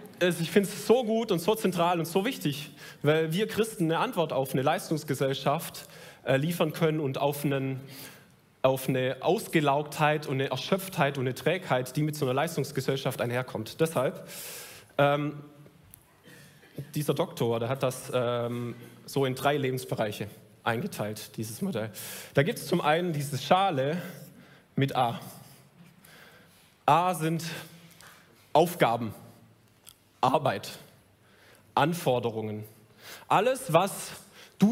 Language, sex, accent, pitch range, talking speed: German, male, German, 130-170 Hz, 120 wpm